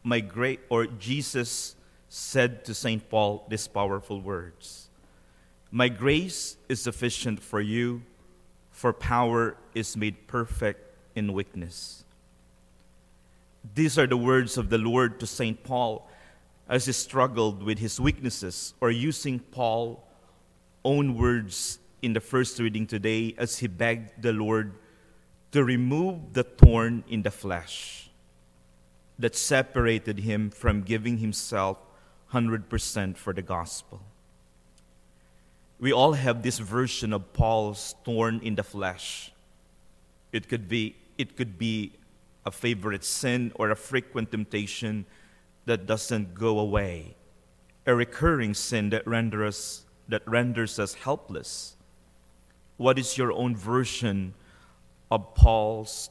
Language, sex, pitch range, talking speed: English, male, 90-120 Hz, 120 wpm